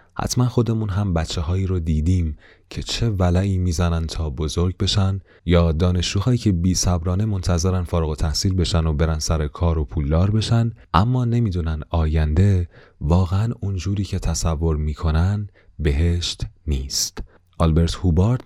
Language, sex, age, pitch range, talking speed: Persian, male, 30-49, 80-95 Hz, 135 wpm